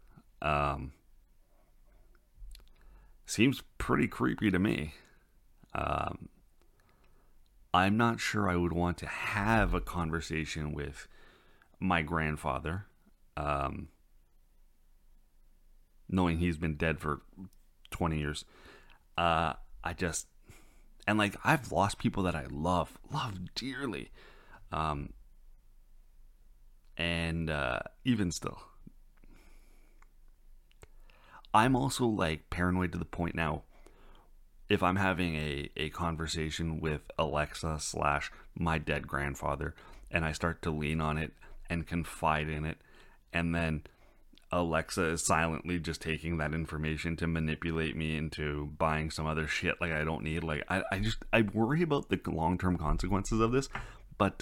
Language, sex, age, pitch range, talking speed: English, male, 30-49, 75-95 Hz, 125 wpm